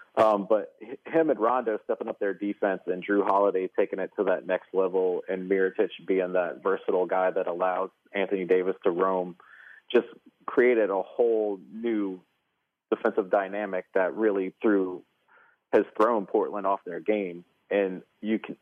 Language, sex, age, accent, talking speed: English, male, 30-49, American, 160 wpm